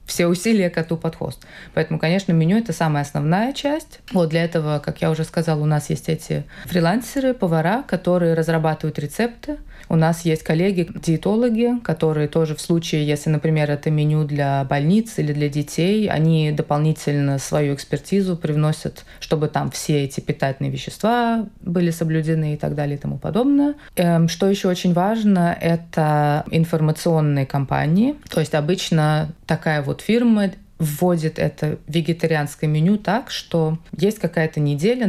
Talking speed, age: 150 wpm, 20-39